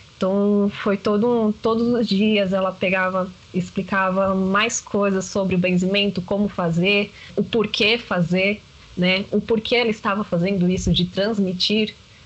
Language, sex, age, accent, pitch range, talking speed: Portuguese, female, 20-39, Brazilian, 195-255 Hz, 135 wpm